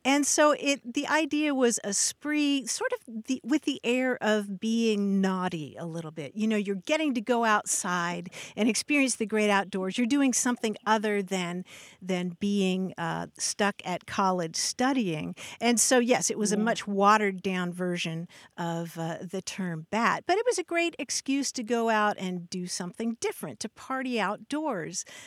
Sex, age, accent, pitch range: female, 50-69, American, 190-260 Hz